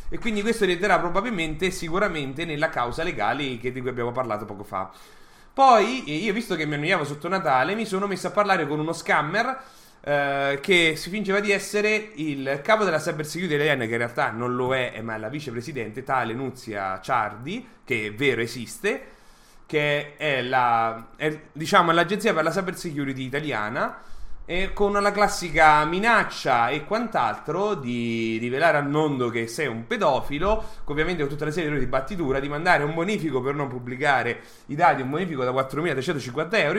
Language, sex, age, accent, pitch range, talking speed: English, male, 30-49, Italian, 130-190 Hz, 180 wpm